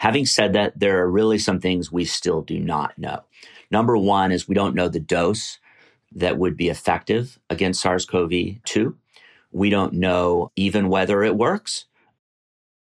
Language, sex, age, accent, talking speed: English, male, 40-59, American, 160 wpm